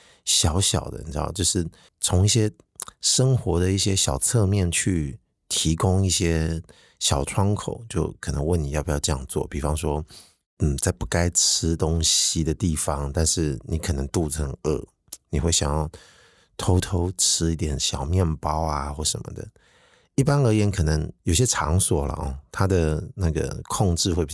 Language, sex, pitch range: Chinese, male, 80-95 Hz